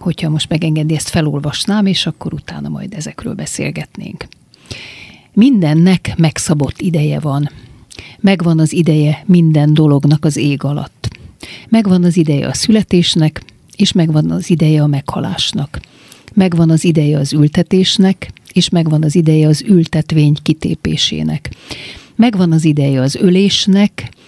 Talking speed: 125 wpm